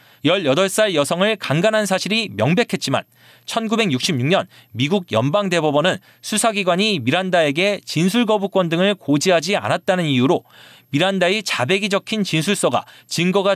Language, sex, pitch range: Korean, male, 145-210 Hz